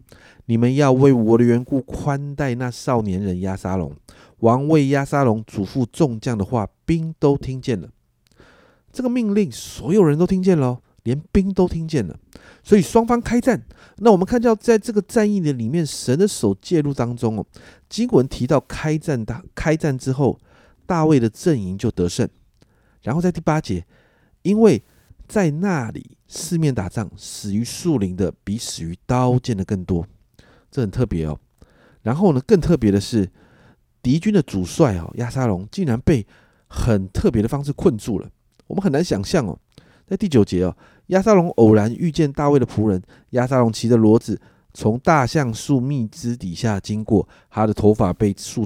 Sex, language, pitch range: male, Chinese, 105-155 Hz